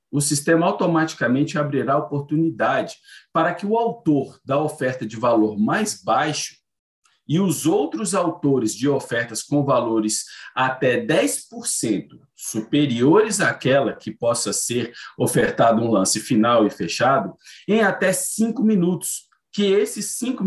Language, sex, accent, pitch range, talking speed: Portuguese, male, Brazilian, 135-190 Hz, 125 wpm